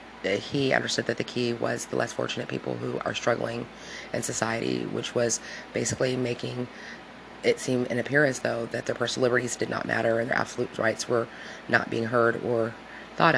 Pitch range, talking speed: 115-125 Hz, 185 wpm